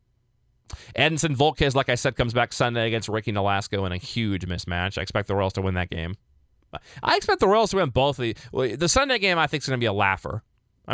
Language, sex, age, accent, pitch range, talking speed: English, male, 20-39, American, 100-140 Hz, 245 wpm